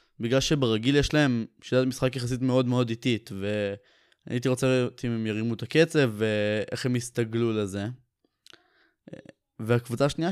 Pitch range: 115-135 Hz